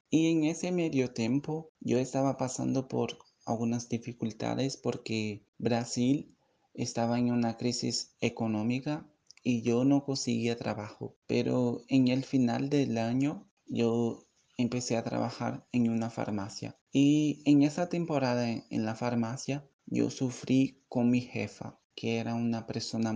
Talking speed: 135 wpm